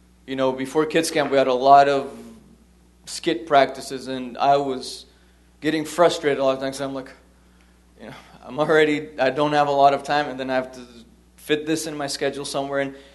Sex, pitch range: male, 130-160 Hz